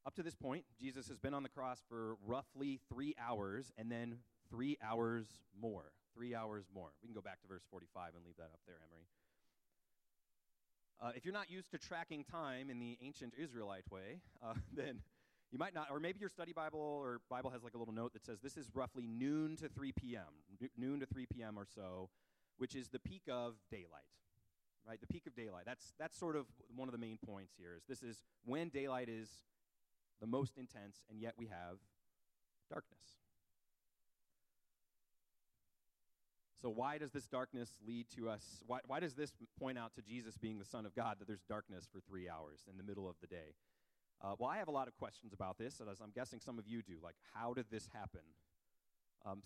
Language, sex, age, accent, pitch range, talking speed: English, male, 30-49, American, 100-130 Hz, 210 wpm